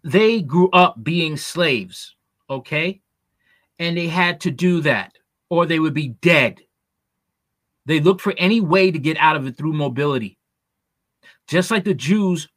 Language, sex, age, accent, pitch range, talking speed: English, male, 30-49, American, 140-180 Hz, 160 wpm